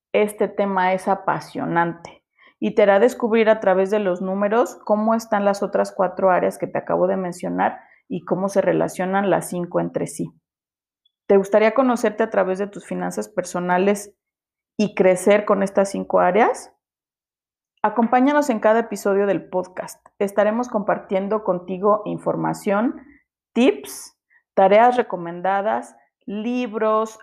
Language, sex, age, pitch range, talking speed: Spanish, female, 30-49, 190-225 Hz, 135 wpm